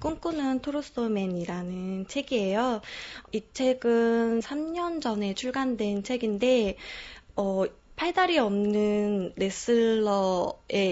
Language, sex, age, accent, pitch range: Korean, female, 20-39, native, 195-255 Hz